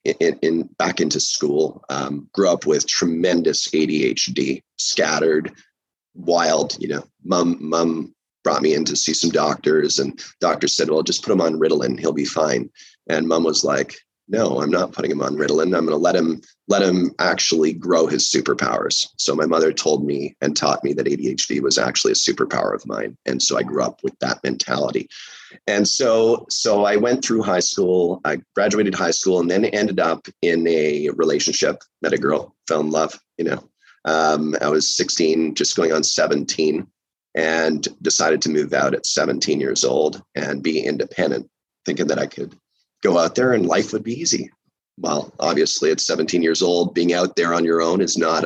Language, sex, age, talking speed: English, male, 30-49, 190 wpm